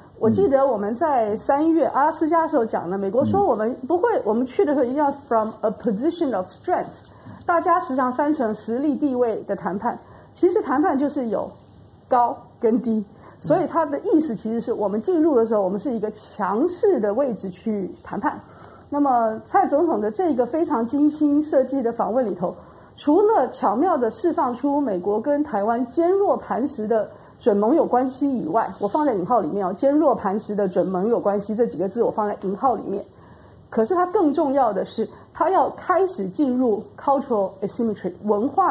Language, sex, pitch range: Chinese, female, 215-305 Hz